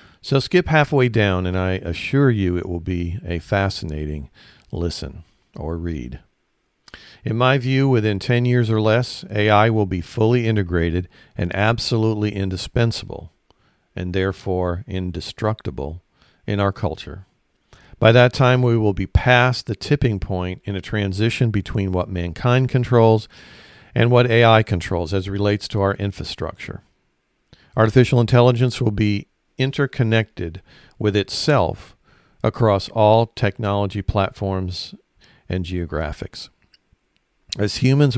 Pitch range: 90-115 Hz